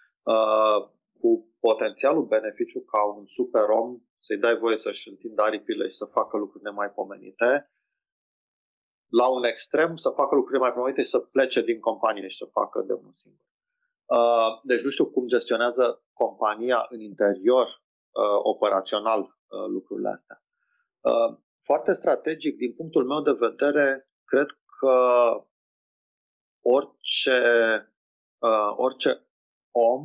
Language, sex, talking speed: Romanian, male, 120 wpm